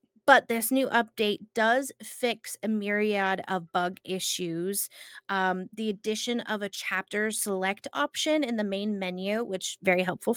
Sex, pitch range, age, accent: female, 195-250 Hz, 20-39, American